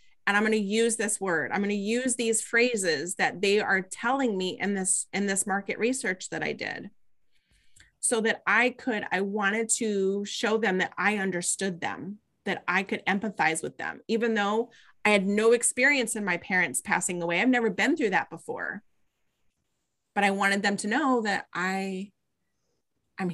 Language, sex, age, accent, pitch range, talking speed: English, female, 30-49, American, 195-245 Hz, 185 wpm